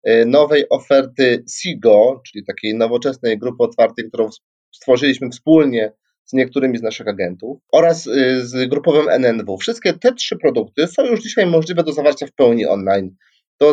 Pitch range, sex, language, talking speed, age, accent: 130-160 Hz, male, Polish, 150 wpm, 30-49, native